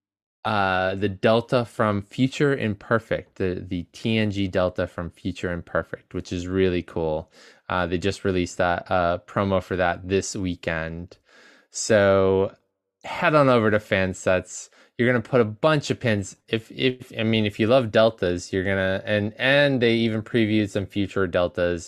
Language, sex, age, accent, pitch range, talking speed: English, male, 20-39, American, 90-110 Hz, 170 wpm